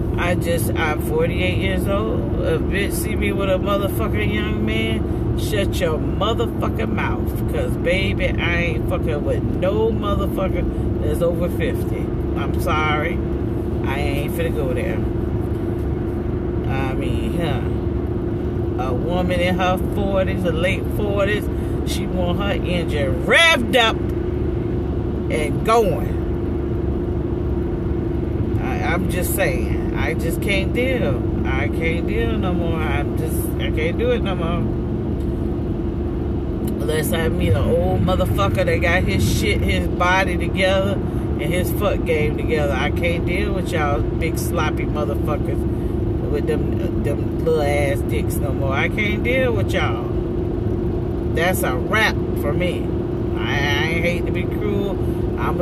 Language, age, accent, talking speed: English, 40-59, American, 140 wpm